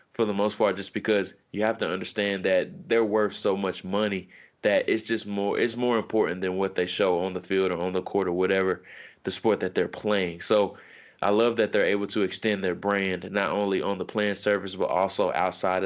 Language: English